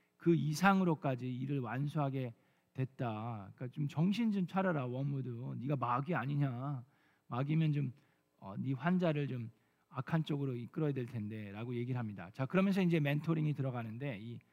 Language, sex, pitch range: Korean, male, 125-180 Hz